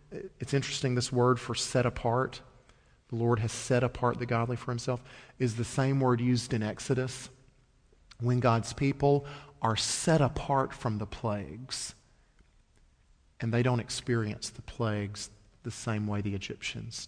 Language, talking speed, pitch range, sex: English, 150 wpm, 105-130 Hz, male